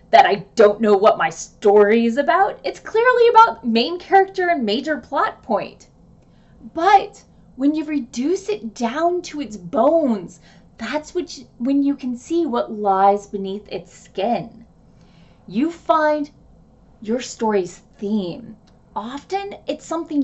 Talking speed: 135 wpm